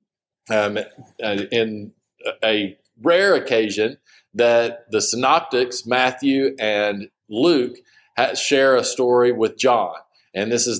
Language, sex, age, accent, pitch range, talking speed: English, male, 40-59, American, 110-140 Hz, 105 wpm